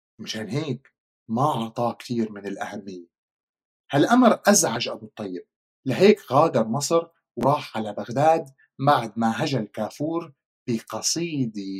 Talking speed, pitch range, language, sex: 110 wpm, 115-145 Hz, Arabic, male